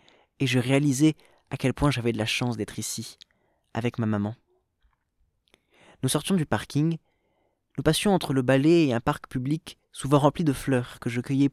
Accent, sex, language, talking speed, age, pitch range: French, male, French, 180 wpm, 20-39, 120-155 Hz